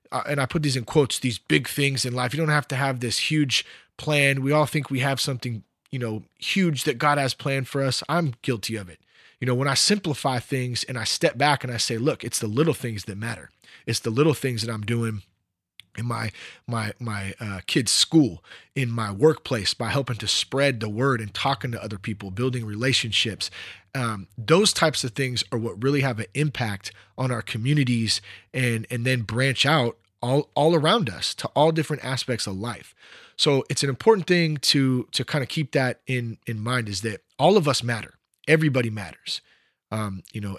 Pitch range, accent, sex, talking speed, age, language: 110-140 Hz, American, male, 210 wpm, 30-49, English